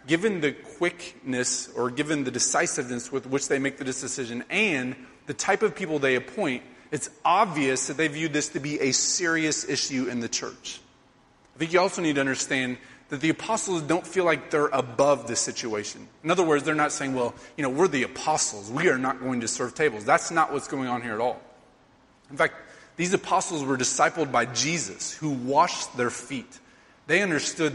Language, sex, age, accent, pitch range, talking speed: English, male, 30-49, American, 130-165 Hz, 200 wpm